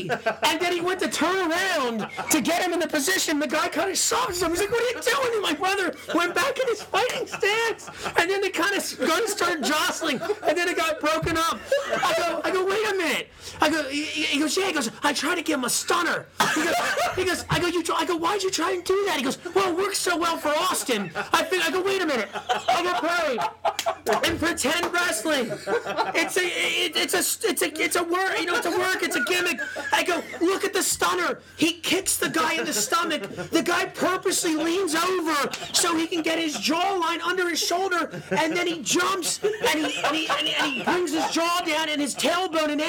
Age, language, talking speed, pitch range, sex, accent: 30-49, English, 240 wpm, 315-370 Hz, male, American